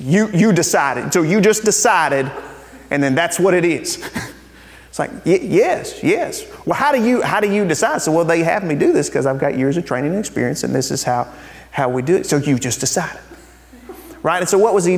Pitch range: 125-170 Hz